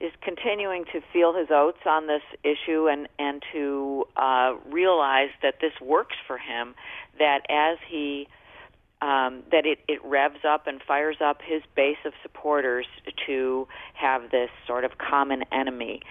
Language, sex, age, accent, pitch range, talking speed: English, female, 40-59, American, 125-150 Hz, 155 wpm